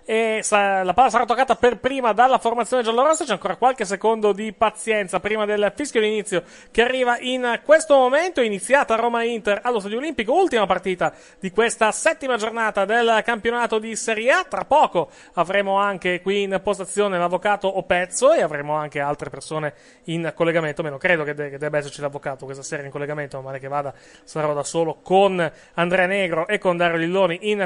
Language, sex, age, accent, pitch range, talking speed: Italian, male, 30-49, native, 160-220 Hz, 185 wpm